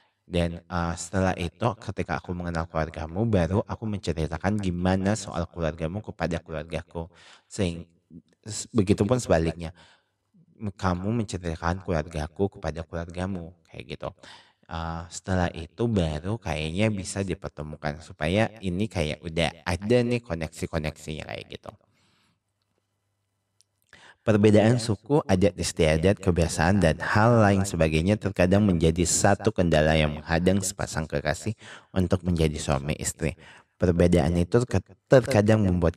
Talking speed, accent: 115 wpm, native